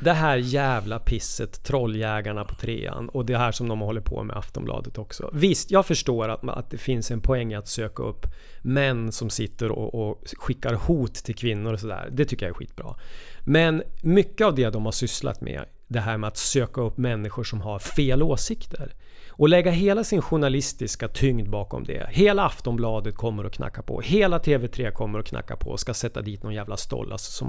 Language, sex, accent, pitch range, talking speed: Swedish, male, native, 110-155 Hz, 200 wpm